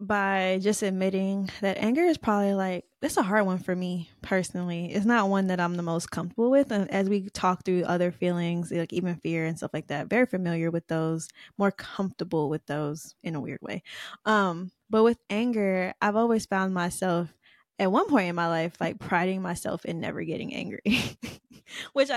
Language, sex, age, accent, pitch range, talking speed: English, female, 10-29, American, 175-205 Hz, 195 wpm